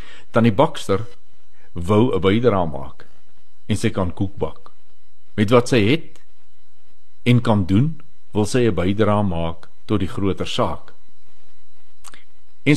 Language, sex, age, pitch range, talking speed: Swedish, male, 60-79, 95-120 Hz, 125 wpm